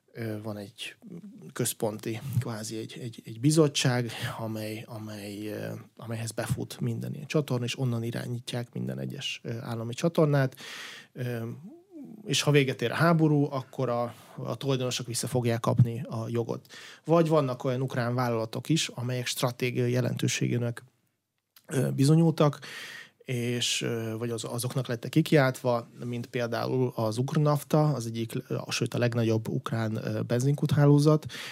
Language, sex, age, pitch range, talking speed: Hungarian, male, 20-39, 115-135 Hz, 120 wpm